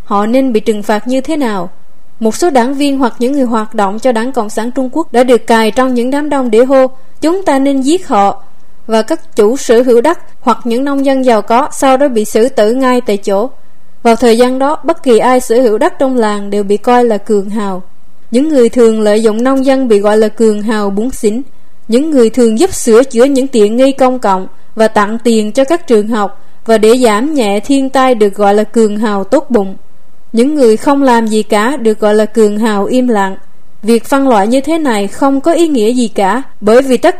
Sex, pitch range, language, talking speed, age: female, 215-265 Hz, Vietnamese, 240 wpm, 20-39